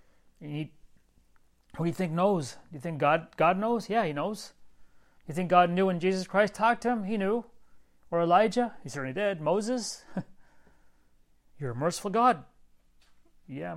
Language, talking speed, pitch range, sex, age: English, 165 wpm, 155-210 Hz, male, 40-59